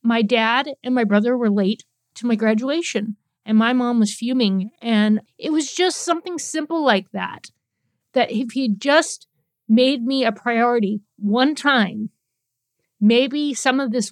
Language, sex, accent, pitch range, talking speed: English, female, American, 215-260 Hz, 155 wpm